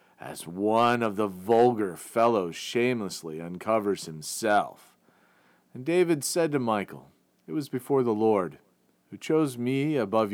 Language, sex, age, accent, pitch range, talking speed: English, male, 40-59, American, 105-140 Hz, 135 wpm